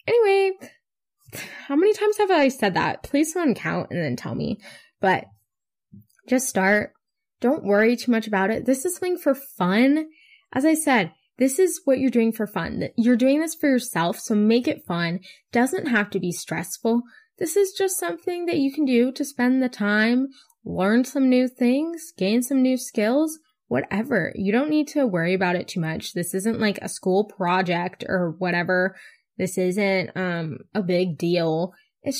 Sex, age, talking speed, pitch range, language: female, 10-29, 185 wpm, 185-270 Hz, English